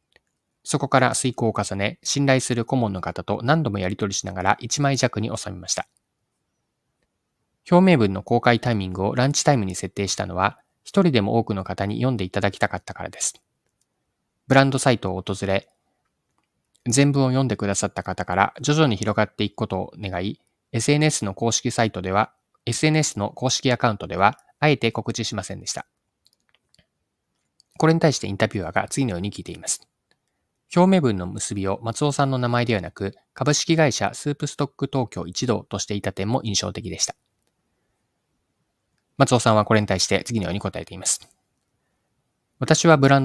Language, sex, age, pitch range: Japanese, male, 20-39, 100-135 Hz